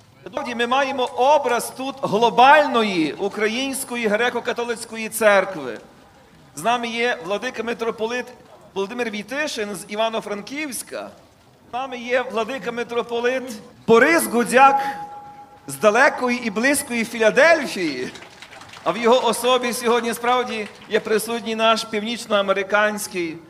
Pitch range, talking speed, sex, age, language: 205-245 Hz, 100 wpm, male, 40-59, Ukrainian